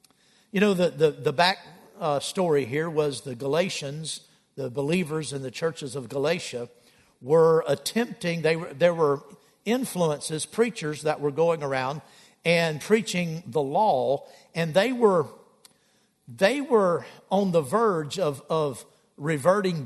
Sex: male